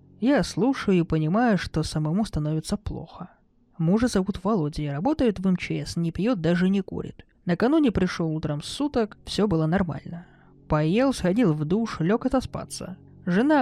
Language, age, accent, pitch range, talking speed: Russian, 20-39, native, 160-215 Hz, 145 wpm